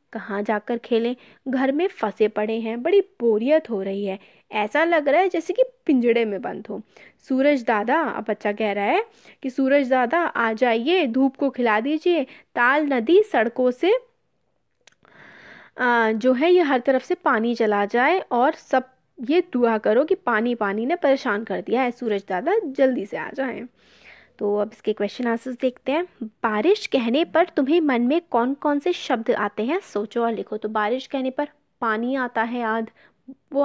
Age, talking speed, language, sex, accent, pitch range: 20-39, 180 wpm, Hindi, female, native, 225-280 Hz